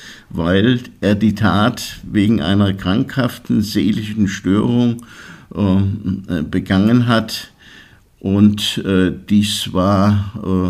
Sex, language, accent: male, German, German